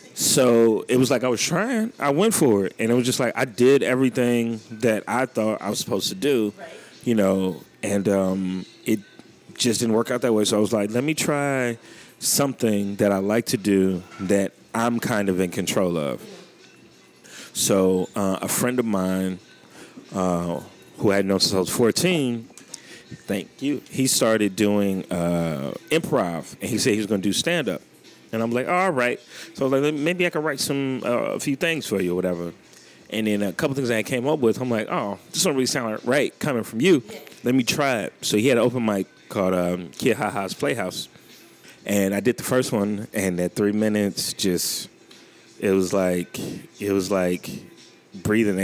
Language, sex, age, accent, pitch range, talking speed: English, male, 30-49, American, 95-125 Hz, 205 wpm